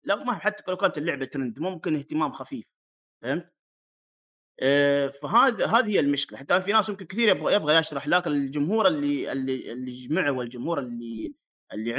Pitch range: 130-185 Hz